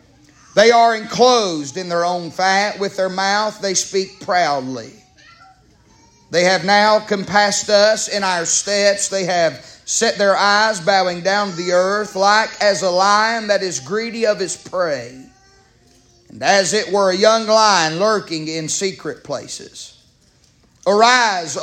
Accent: American